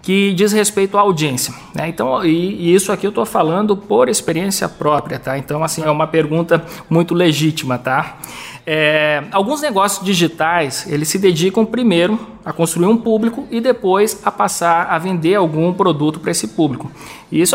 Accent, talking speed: Brazilian, 175 wpm